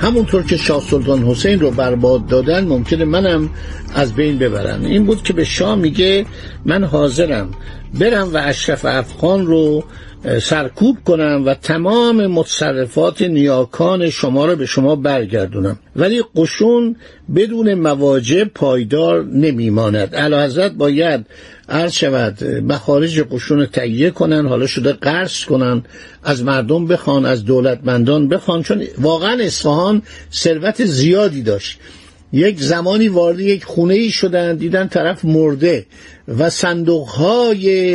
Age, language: 60-79, Persian